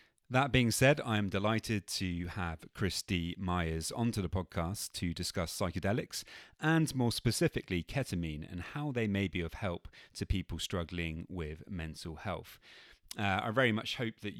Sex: male